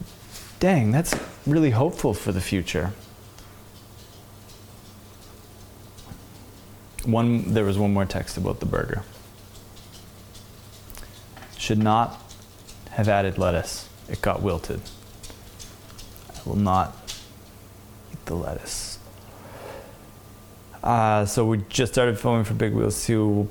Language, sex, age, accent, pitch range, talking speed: English, male, 20-39, American, 95-110 Hz, 105 wpm